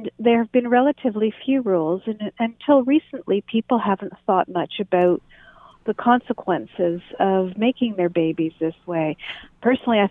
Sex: female